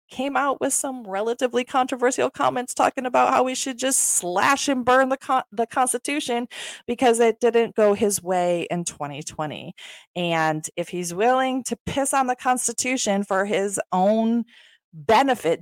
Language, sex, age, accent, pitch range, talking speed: English, female, 30-49, American, 160-235 Hz, 160 wpm